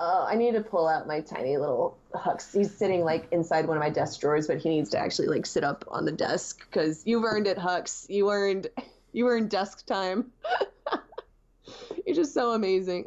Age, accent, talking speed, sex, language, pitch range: 20-39, American, 205 wpm, female, English, 170-235 Hz